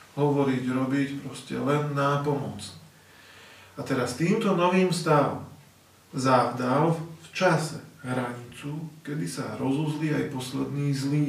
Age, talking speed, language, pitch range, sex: 40-59, 110 wpm, Slovak, 135-165 Hz, male